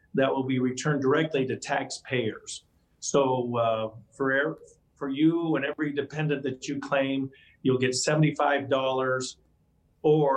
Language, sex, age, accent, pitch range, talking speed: English, male, 50-69, American, 115-140 Hz, 125 wpm